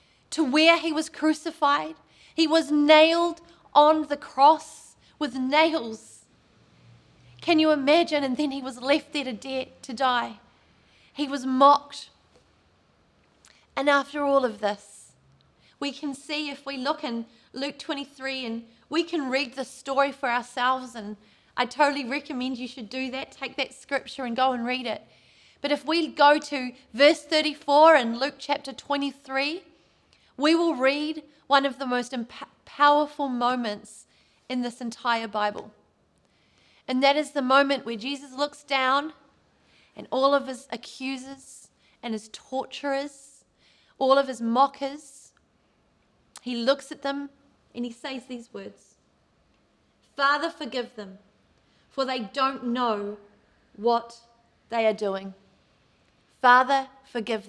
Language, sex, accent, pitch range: English, female, Australian, 245-290 Hz